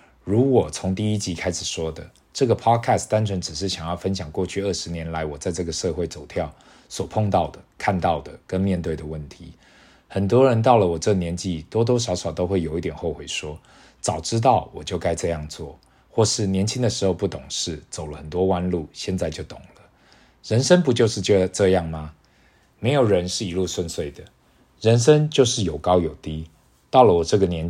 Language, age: Chinese, 20-39